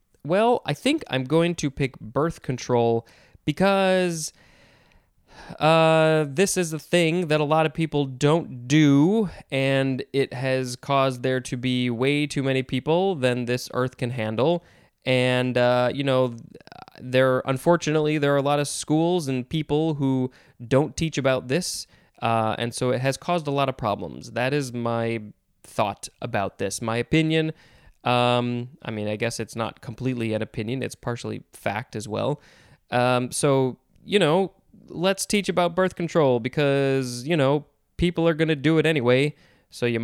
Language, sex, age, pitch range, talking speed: English, male, 20-39, 125-160 Hz, 165 wpm